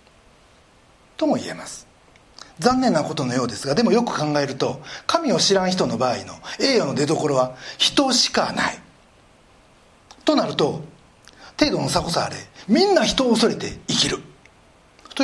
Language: Japanese